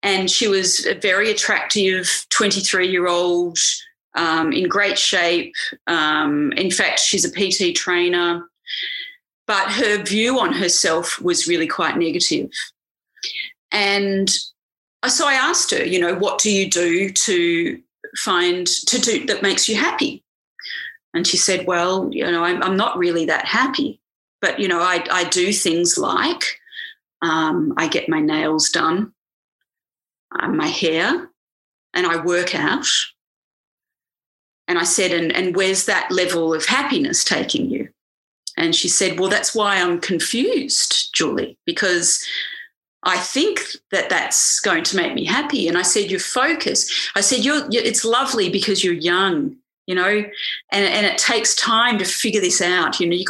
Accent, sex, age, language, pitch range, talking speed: Australian, female, 30-49, English, 180-285 Hz, 150 wpm